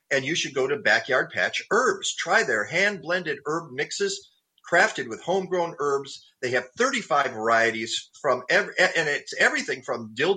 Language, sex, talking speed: English, male, 160 wpm